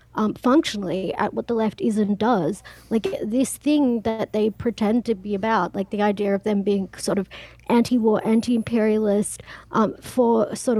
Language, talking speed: English, 170 wpm